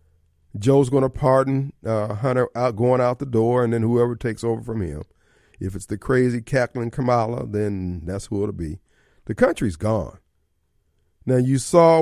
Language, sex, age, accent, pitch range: Japanese, male, 50-69, American, 100-135 Hz